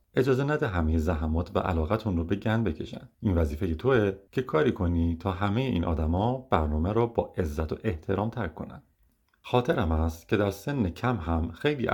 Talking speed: 180 wpm